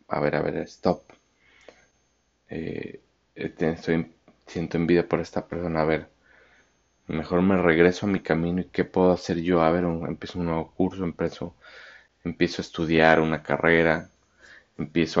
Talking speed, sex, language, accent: 155 wpm, male, Spanish, Mexican